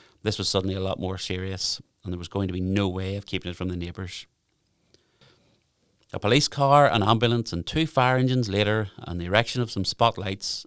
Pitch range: 90-110 Hz